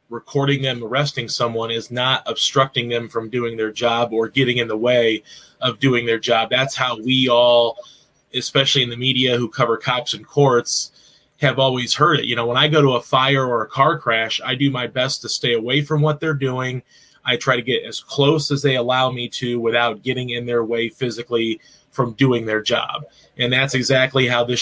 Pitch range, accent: 120-145 Hz, American